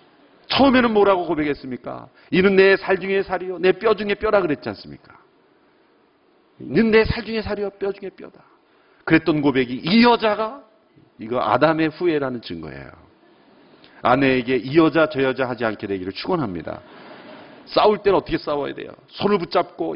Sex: male